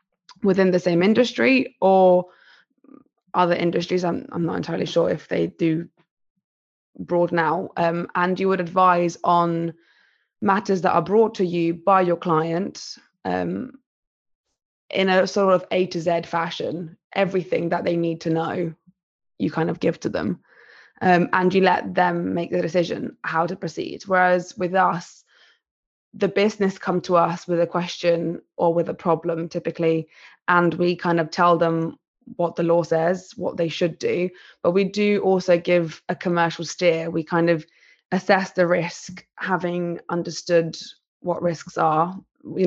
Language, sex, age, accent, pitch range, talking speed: English, female, 20-39, British, 170-185 Hz, 160 wpm